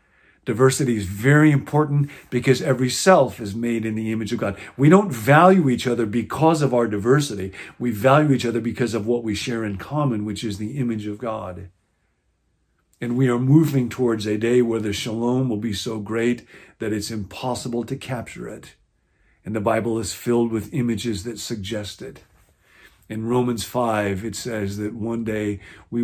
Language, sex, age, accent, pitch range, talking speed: English, male, 50-69, American, 105-130 Hz, 180 wpm